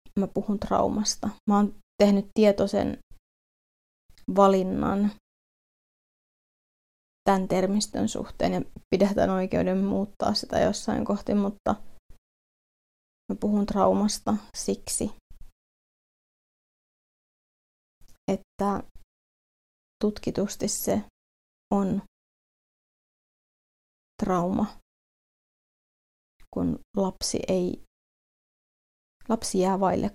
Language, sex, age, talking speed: Finnish, female, 20-39, 70 wpm